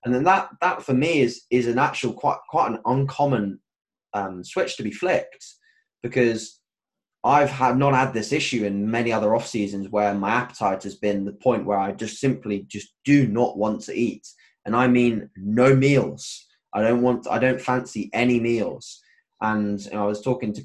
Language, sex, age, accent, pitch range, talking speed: English, male, 20-39, British, 105-130 Hz, 195 wpm